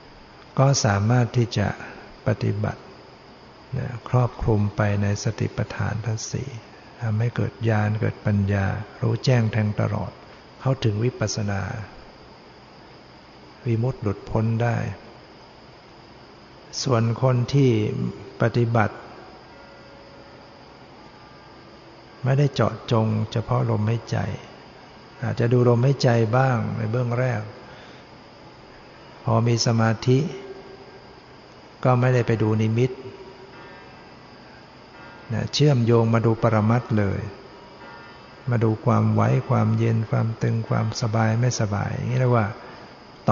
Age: 60-79